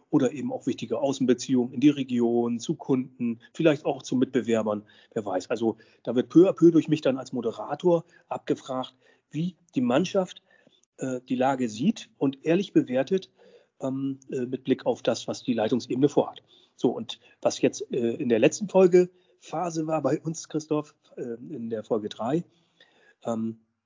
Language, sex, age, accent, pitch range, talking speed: German, male, 40-59, German, 125-160 Hz, 170 wpm